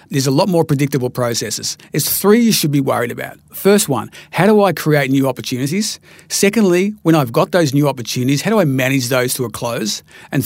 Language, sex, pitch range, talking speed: English, male, 130-165 Hz, 210 wpm